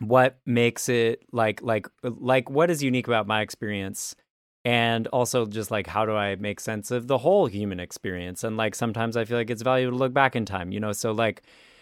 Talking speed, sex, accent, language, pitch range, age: 220 wpm, male, American, English, 105-125 Hz, 30-49